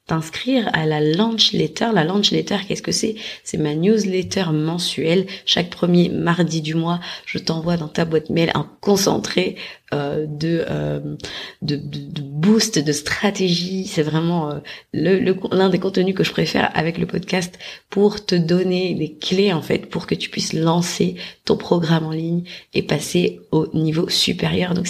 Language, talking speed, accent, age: French, 175 wpm, French, 30-49